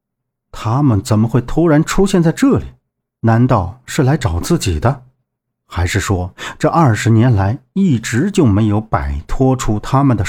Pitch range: 105-140 Hz